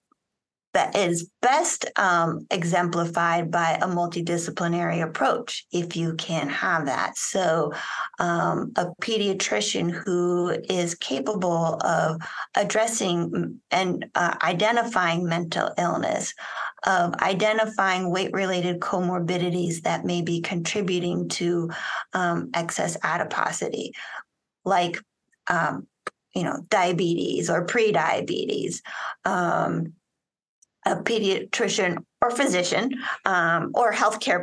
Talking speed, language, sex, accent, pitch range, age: 100 wpm, English, female, American, 175-200 Hz, 30-49